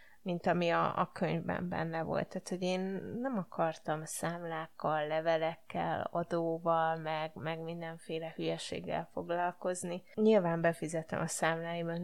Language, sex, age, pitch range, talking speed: Hungarian, female, 20-39, 165-190 Hz, 120 wpm